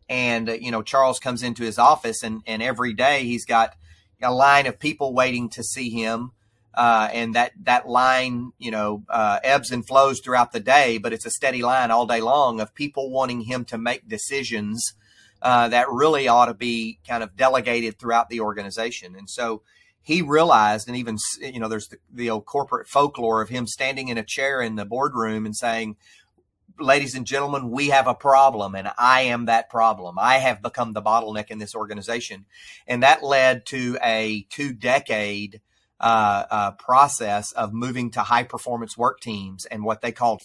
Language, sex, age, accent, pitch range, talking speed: English, male, 30-49, American, 110-130 Hz, 185 wpm